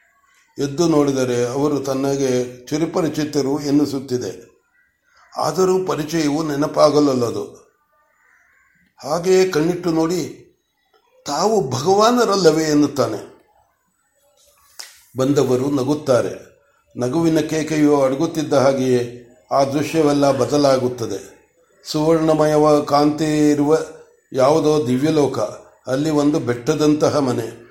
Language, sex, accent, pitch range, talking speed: Kannada, male, native, 135-160 Hz, 75 wpm